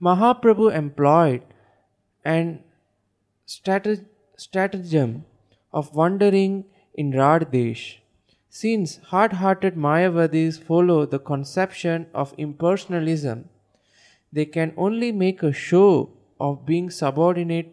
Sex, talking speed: male, 90 wpm